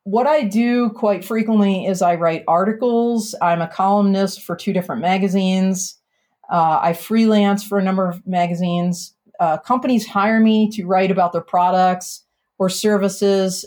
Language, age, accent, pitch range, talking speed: English, 40-59, American, 175-210 Hz, 155 wpm